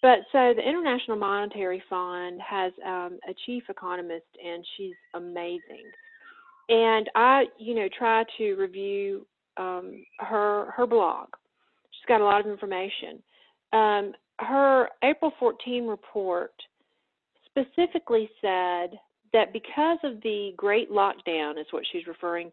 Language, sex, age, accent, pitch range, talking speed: English, female, 40-59, American, 180-235 Hz, 130 wpm